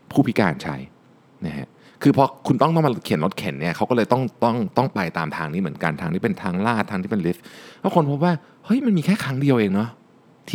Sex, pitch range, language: male, 85-140 Hz, Thai